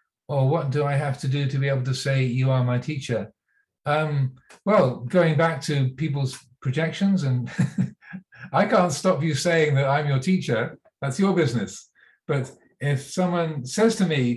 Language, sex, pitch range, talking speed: English, male, 130-160 Hz, 175 wpm